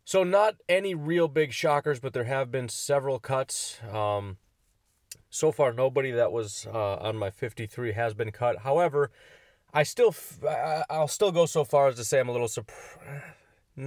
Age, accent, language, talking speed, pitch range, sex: 20-39, American, English, 165 wpm, 105-130 Hz, male